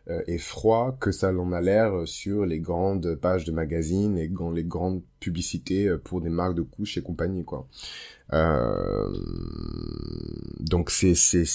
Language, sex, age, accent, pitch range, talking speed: French, male, 20-39, French, 85-100 Hz, 155 wpm